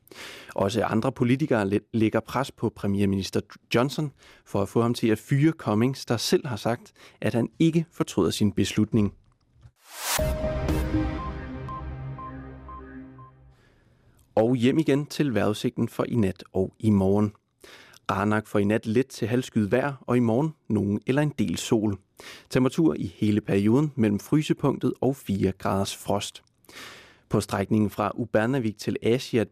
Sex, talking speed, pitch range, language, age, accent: male, 140 wpm, 100-135 Hz, English, 30-49, Danish